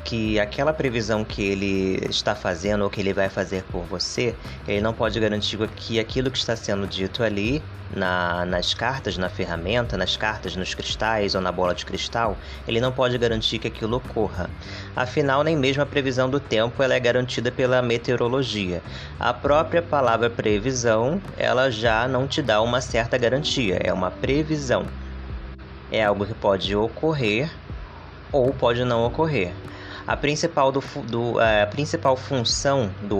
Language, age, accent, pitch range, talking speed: Portuguese, 20-39, Brazilian, 95-125 Hz, 155 wpm